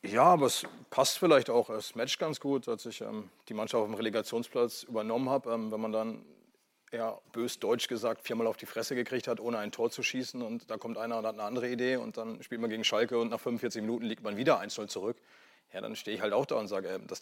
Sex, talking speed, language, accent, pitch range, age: male, 260 wpm, German, German, 115-130 Hz, 30-49